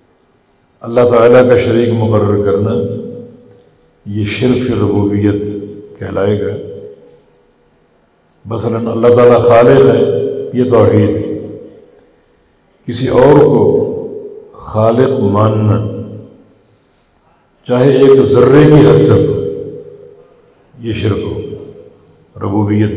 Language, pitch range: English, 105-130 Hz